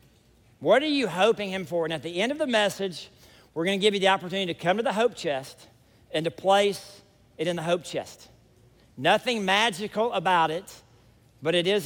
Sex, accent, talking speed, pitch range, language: male, American, 205 wpm, 160-215 Hz, English